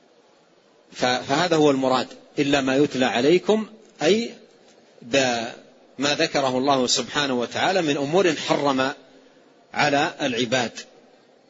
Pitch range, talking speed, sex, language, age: 135-185 Hz, 95 wpm, male, Arabic, 40-59